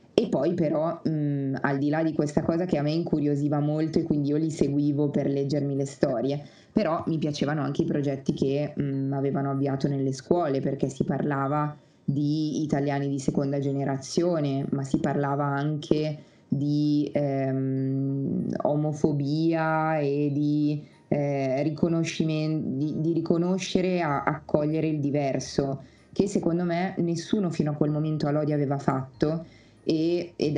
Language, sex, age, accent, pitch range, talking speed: Italian, female, 20-39, native, 140-160 Hz, 145 wpm